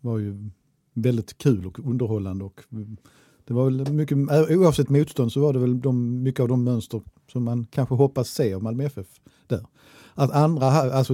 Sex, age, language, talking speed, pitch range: male, 50-69, Swedish, 180 wpm, 110-135 Hz